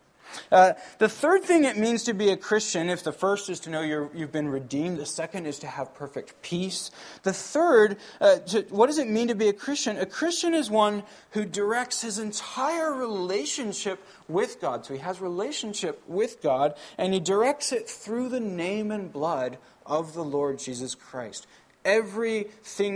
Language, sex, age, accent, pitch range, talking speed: English, male, 20-39, American, 150-210 Hz, 180 wpm